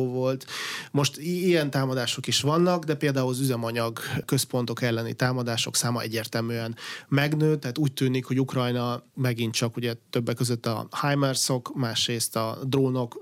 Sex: male